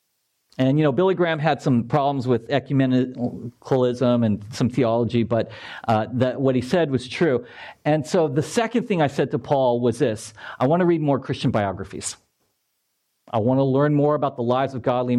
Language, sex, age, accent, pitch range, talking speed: English, male, 50-69, American, 130-175 Hz, 190 wpm